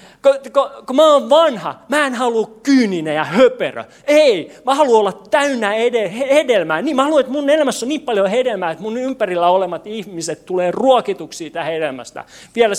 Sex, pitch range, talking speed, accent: male, 155-240 Hz, 165 wpm, native